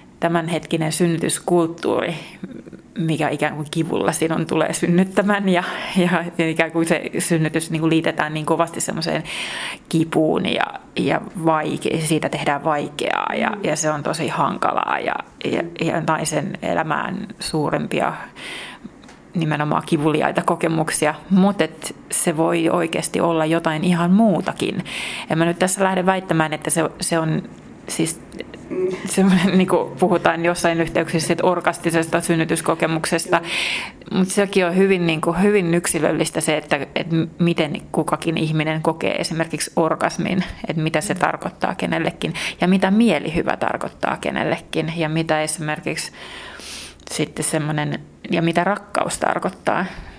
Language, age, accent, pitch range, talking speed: Finnish, 30-49, native, 160-175 Hz, 125 wpm